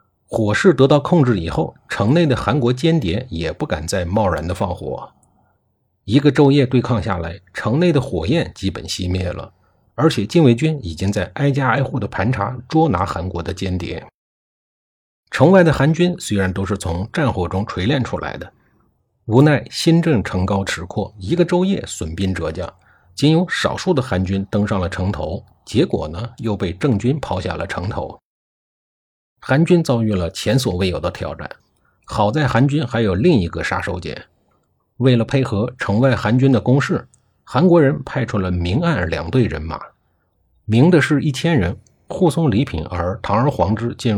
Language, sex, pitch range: Chinese, male, 95-135 Hz